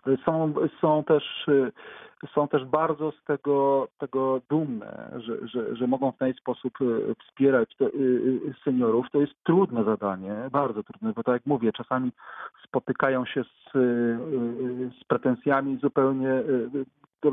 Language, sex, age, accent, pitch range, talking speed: Polish, male, 40-59, native, 120-145 Hz, 140 wpm